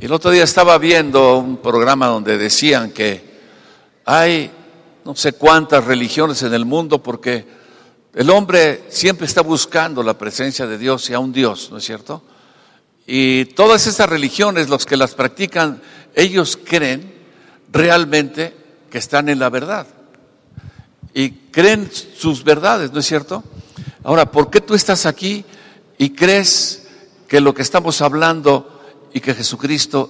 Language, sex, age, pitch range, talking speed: Spanish, male, 60-79, 135-180 Hz, 150 wpm